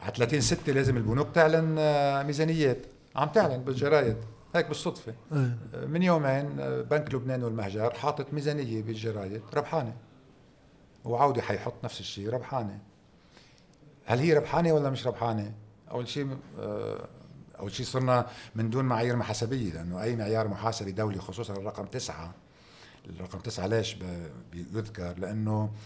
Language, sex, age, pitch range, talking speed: Arabic, male, 50-69, 110-150 Hz, 120 wpm